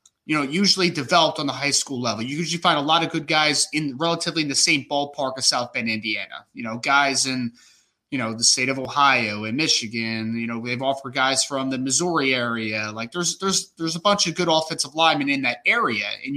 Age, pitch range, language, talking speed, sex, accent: 20-39, 135-180 Hz, English, 225 wpm, male, American